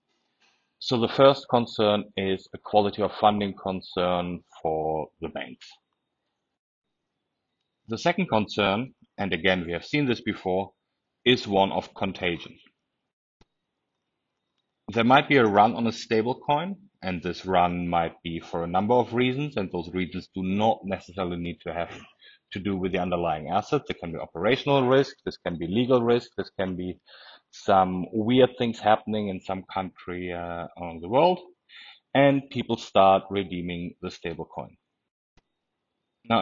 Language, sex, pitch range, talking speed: English, male, 90-125 Hz, 155 wpm